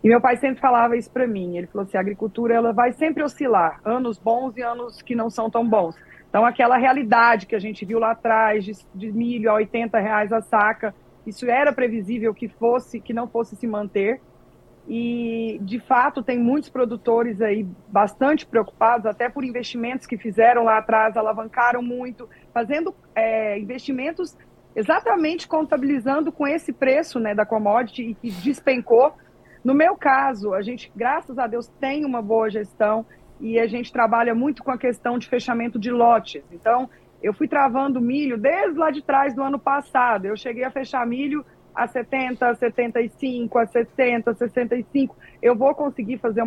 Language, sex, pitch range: Portuguese, female, 225-260 Hz